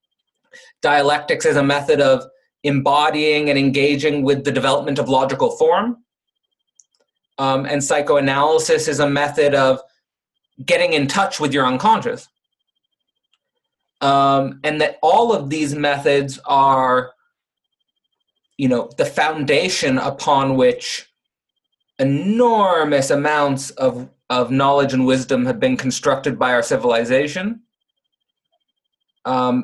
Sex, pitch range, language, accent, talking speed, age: male, 140-230 Hz, English, American, 110 wpm, 30-49